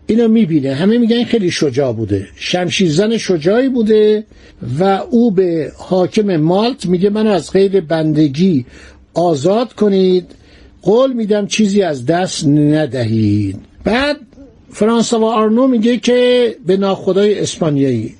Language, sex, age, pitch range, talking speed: Persian, male, 60-79, 155-220 Hz, 120 wpm